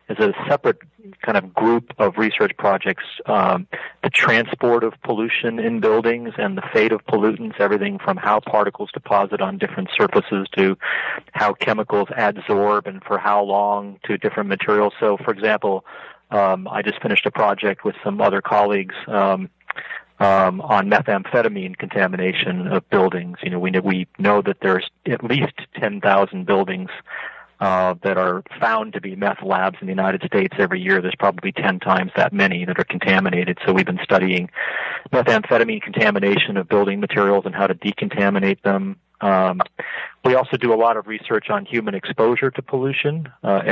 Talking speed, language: 170 wpm, English